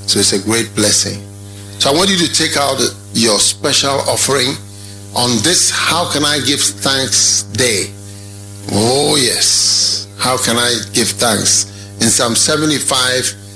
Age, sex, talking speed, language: 50-69, male, 145 wpm, English